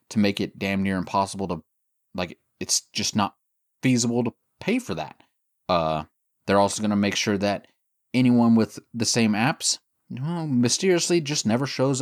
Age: 20-39